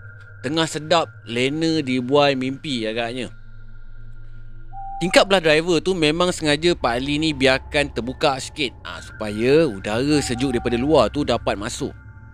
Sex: male